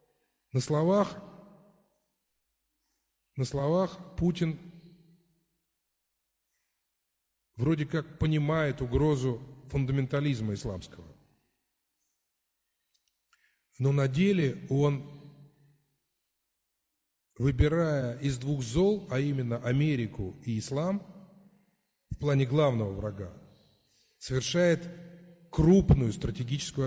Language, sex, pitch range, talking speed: Russian, male, 125-170 Hz, 65 wpm